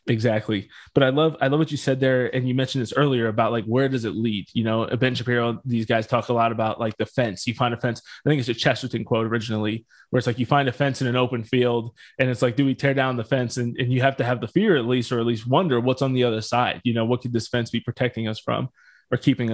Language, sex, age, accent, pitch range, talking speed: English, male, 20-39, American, 115-135 Hz, 295 wpm